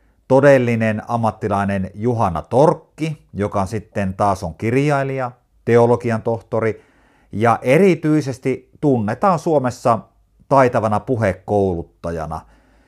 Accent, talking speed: native, 85 wpm